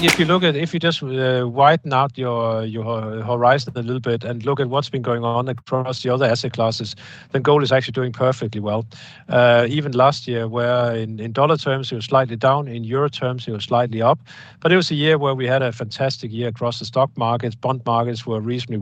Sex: male